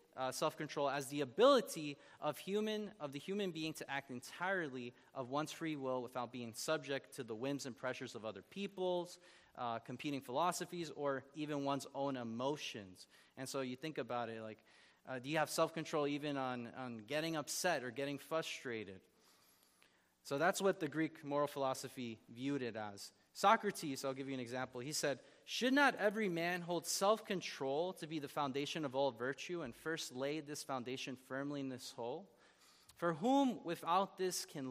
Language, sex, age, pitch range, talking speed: English, male, 30-49, 125-165 Hz, 190 wpm